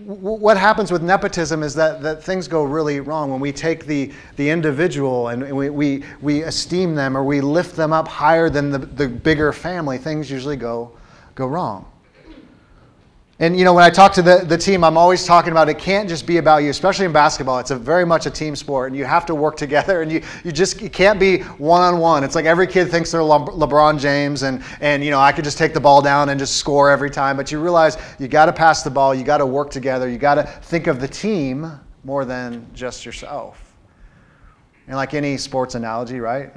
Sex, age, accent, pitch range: male, 30-49, American, 130-160 Hz